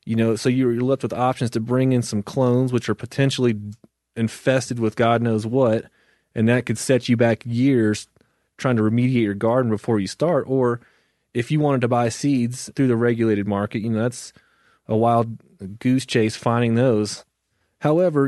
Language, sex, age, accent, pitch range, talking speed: English, male, 30-49, American, 110-125 Hz, 185 wpm